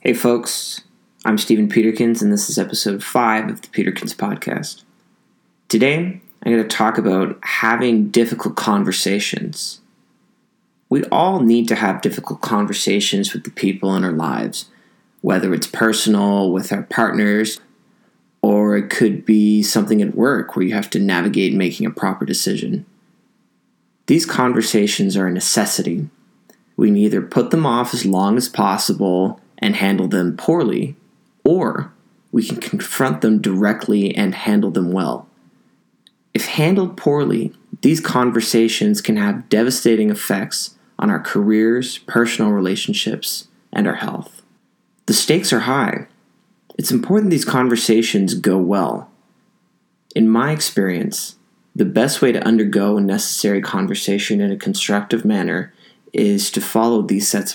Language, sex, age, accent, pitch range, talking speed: English, male, 20-39, American, 105-120 Hz, 140 wpm